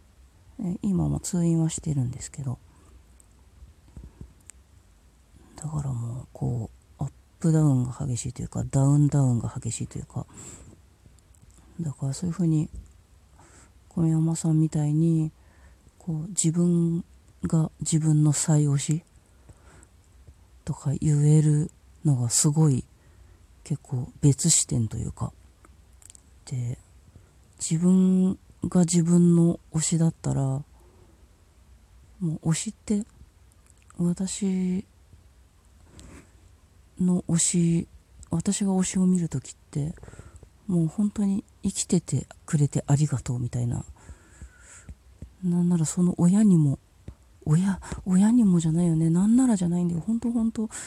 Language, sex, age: Japanese, female, 40-59